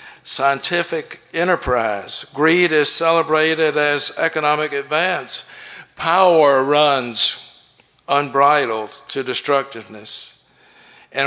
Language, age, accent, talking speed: English, 60-79, American, 75 wpm